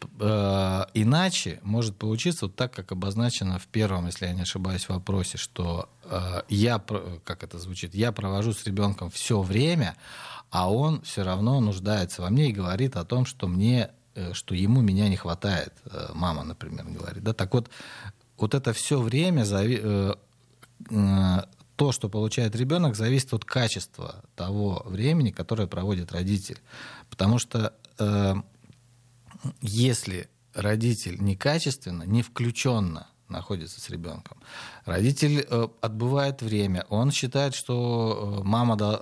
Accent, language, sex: native, Russian, male